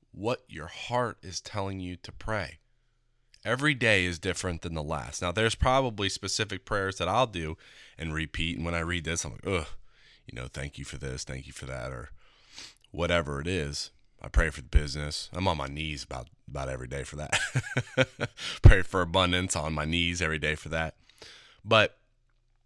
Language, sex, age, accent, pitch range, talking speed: English, male, 30-49, American, 85-120 Hz, 195 wpm